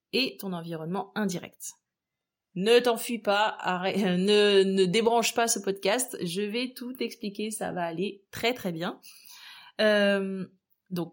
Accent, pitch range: French, 185-225 Hz